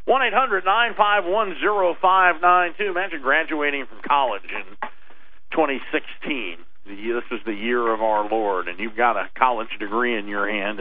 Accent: American